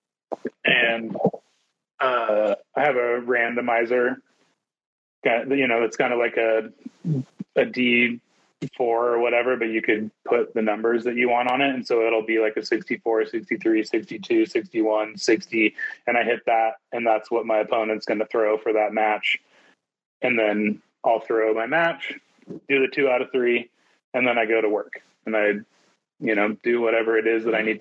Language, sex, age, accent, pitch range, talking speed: English, male, 30-49, American, 110-125 Hz, 180 wpm